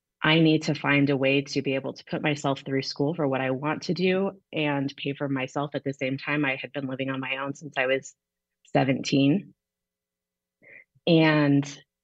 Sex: female